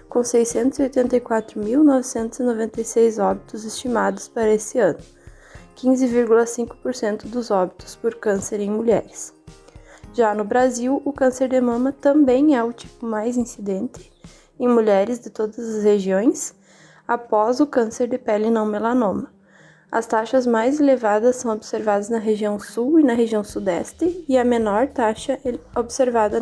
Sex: female